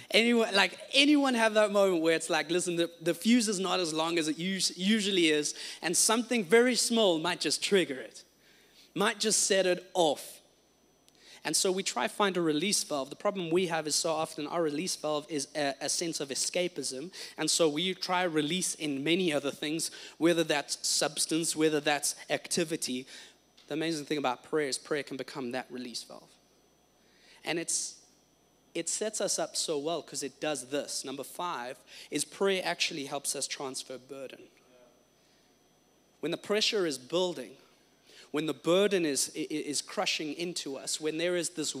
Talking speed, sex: 180 wpm, male